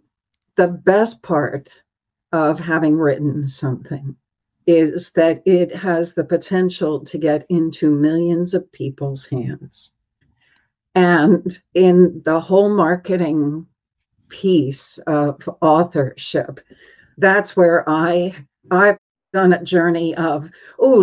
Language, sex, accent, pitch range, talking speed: English, female, American, 155-195 Hz, 105 wpm